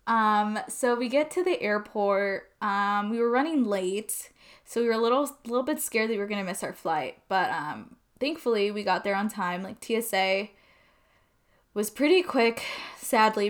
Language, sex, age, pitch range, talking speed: English, female, 10-29, 200-240 Hz, 190 wpm